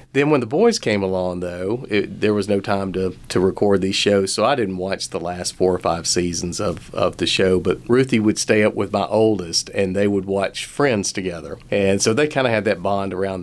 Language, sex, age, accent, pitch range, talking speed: English, male, 40-59, American, 95-115 Hz, 235 wpm